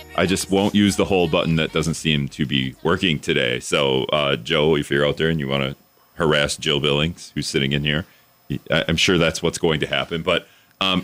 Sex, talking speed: male, 225 wpm